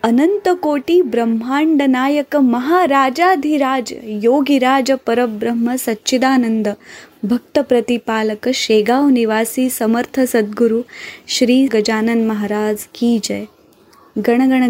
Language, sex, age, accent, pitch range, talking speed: Marathi, female, 20-39, native, 225-280 Hz, 80 wpm